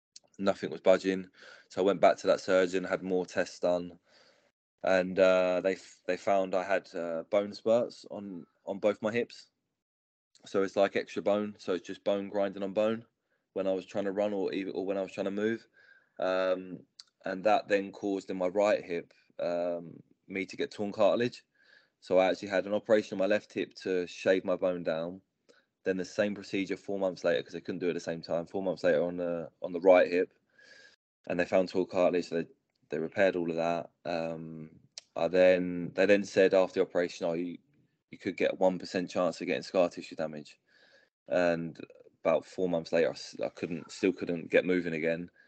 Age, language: 20-39, English